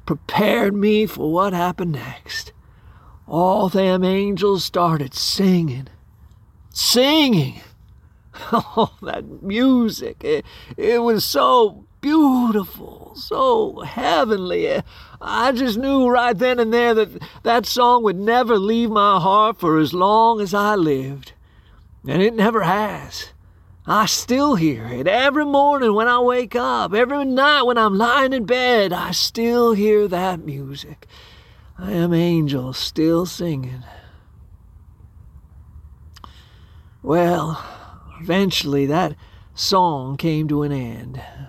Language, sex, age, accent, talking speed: English, male, 40-59, American, 115 wpm